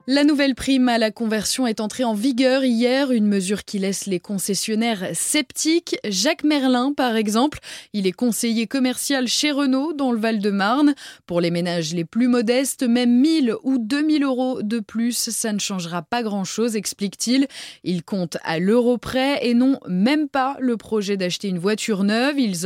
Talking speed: 175 wpm